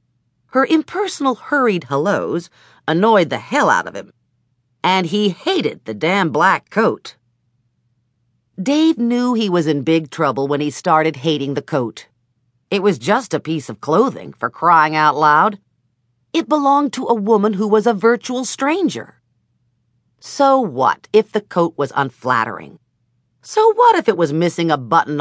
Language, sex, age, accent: English, female, 50-69, American